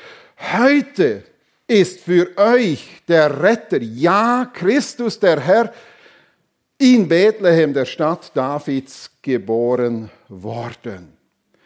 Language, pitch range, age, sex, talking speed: German, 175-245 Hz, 50-69, male, 85 wpm